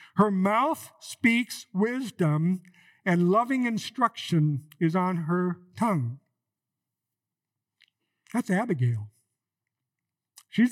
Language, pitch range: English, 155-200 Hz